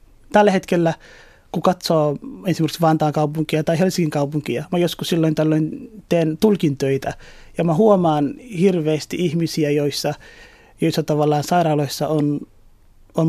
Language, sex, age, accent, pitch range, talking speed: Finnish, male, 30-49, native, 150-185 Hz, 120 wpm